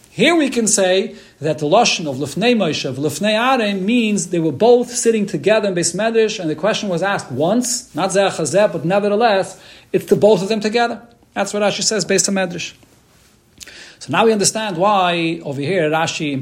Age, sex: 40-59, male